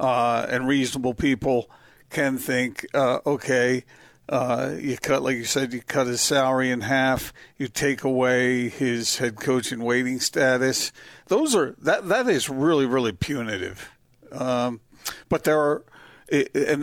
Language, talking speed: English, 150 wpm